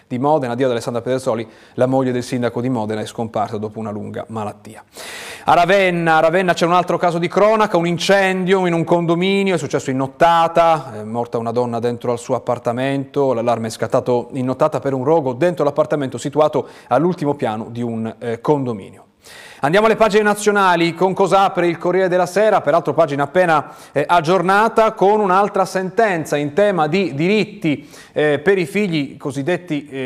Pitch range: 135-185 Hz